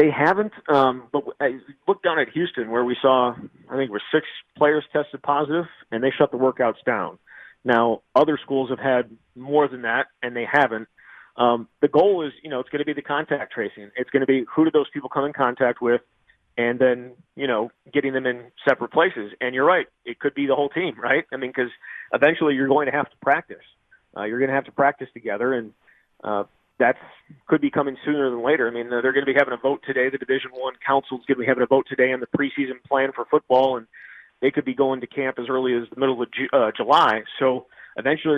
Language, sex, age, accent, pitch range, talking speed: English, male, 40-59, American, 125-145 Hz, 240 wpm